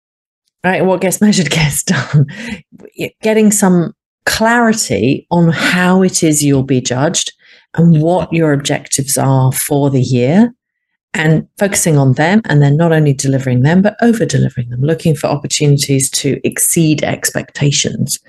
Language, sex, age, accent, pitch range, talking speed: English, female, 40-59, British, 135-175 Hz, 140 wpm